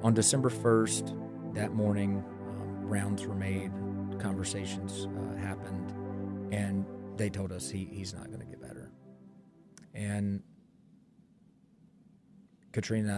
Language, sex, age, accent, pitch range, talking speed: English, male, 40-59, American, 95-115 Hz, 110 wpm